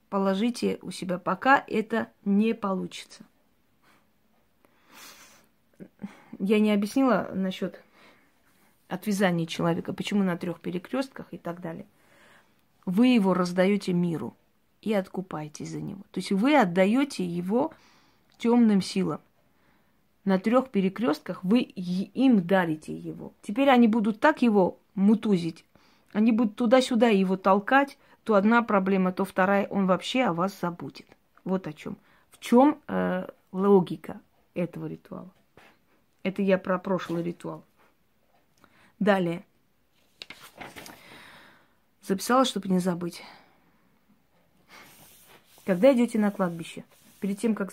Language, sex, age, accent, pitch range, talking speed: Russian, female, 30-49, native, 180-225 Hz, 110 wpm